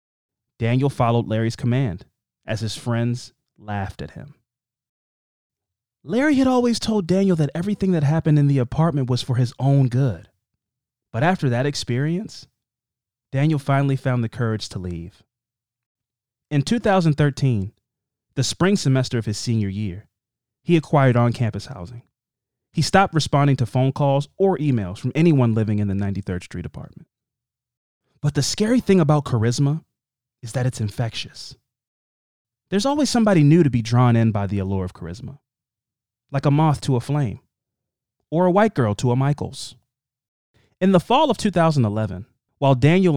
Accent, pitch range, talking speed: American, 110-145 Hz, 155 wpm